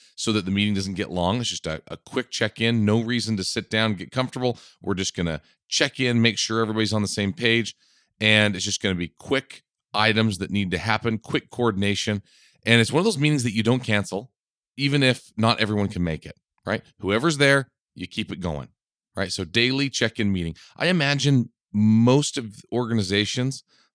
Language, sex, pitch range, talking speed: English, male, 95-120 Hz, 205 wpm